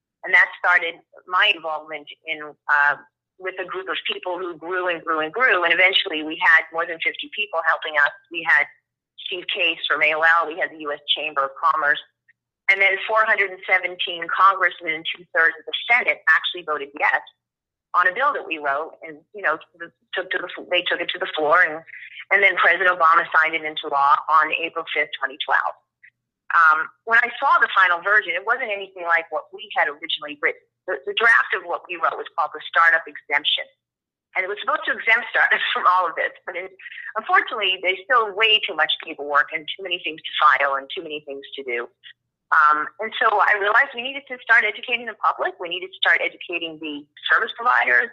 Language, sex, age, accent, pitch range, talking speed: English, female, 30-49, American, 155-200 Hz, 205 wpm